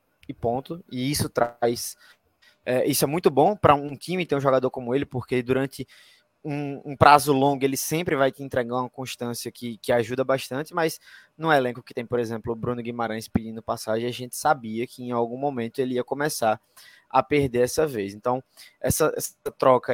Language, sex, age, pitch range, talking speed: Portuguese, male, 20-39, 125-155 Hz, 195 wpm